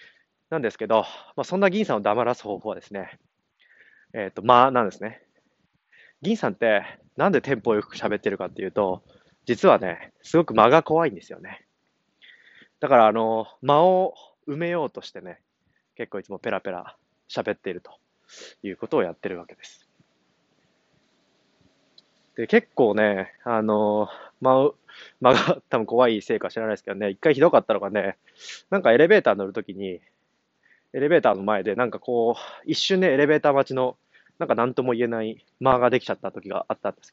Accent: native